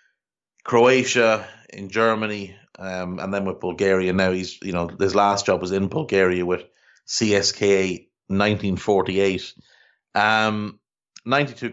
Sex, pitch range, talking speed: male, 95-115 Hz, 120 wpm